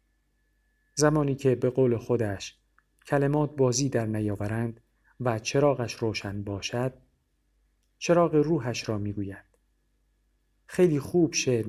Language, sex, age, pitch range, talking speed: Persian, male, 40-59, 105-135 Hz, 105 wpm